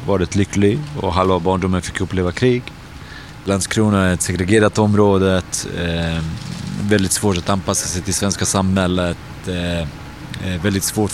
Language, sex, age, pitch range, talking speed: Swedish, male, 30-49, 95-105 Hz, 155 wpm